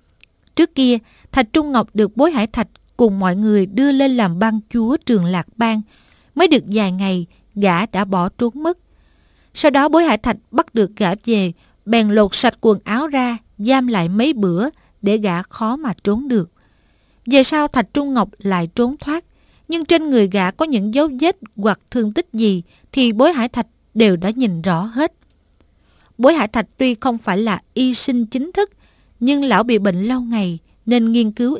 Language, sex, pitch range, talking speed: Vietnamese, female, 205-255 Hz, 195 wpm